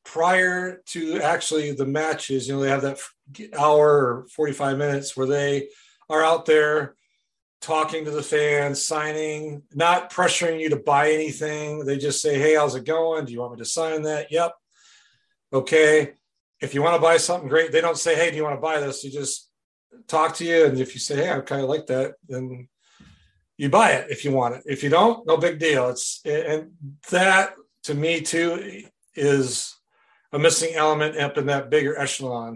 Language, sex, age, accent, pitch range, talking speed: English, male, 40-59, American, 135-165 Hz, 195 wpm